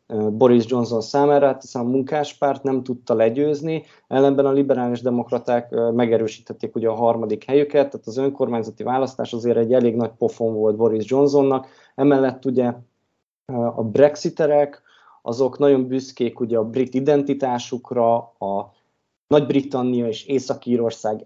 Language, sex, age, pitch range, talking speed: Hungarian, male, 20-39, 115-140 Hz, 135 wpm